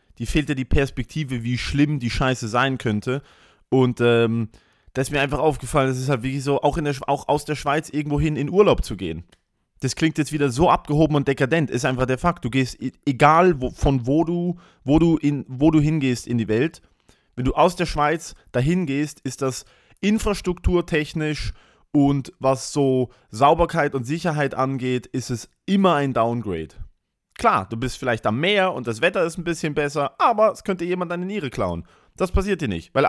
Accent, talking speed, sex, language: German, 200 wpm, male, English